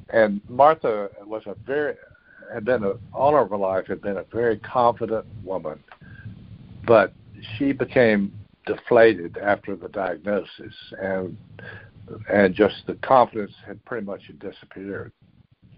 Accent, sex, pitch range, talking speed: American, male, 100-120 Hz, 130 wpm